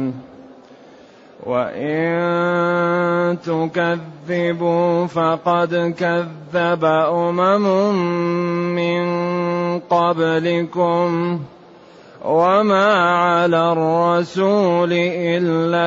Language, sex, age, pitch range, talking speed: Arabic, male, 30-49, 140-175 Hz, 40 wpm